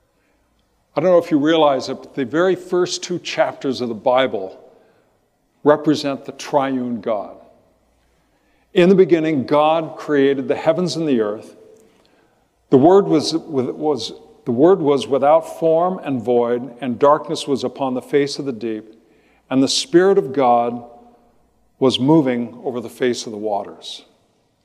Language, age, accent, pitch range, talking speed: English, 60-79, American, 125-150 Hz, 145 wpm